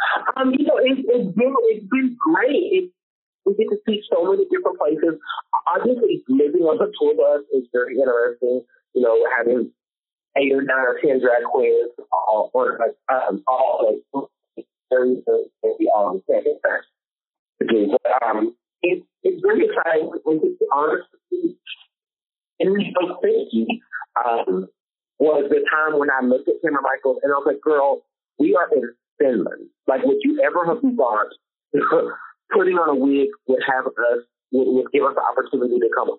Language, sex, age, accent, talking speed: Finnish, male, 40-59, American, 170 wpm